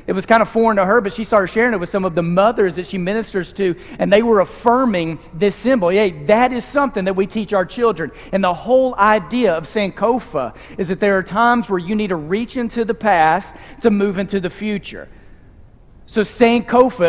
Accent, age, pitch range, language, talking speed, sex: American, 40-59, 180-220 Hz, English, 220 wpm, male